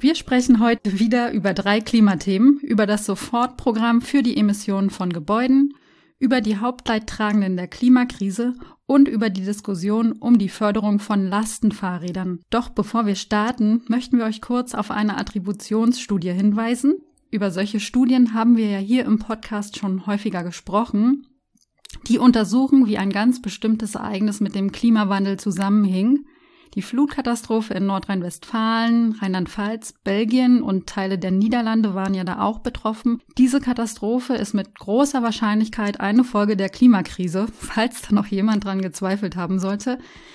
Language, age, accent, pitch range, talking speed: German, 30-49, German, 200-250 Hz, 145 wpm